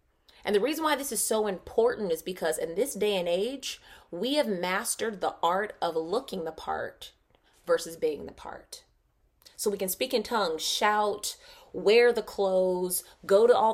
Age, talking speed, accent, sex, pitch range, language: 20-39, 180 wpm, American, female, 180-240 Hz, English